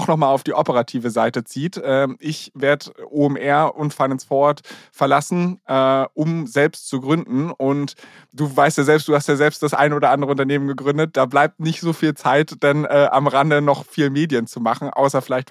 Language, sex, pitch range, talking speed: German, male, 130-150 Hz, 195 wpm